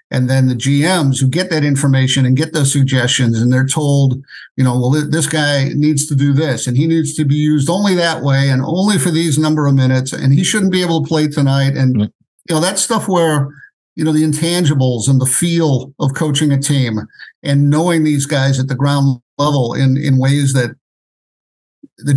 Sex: male